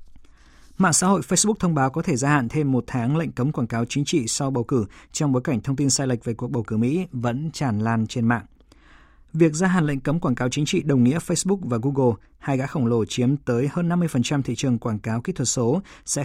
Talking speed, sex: 255 wpm, male